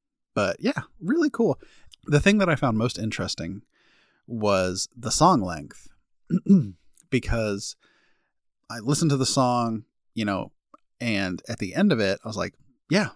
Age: 30-49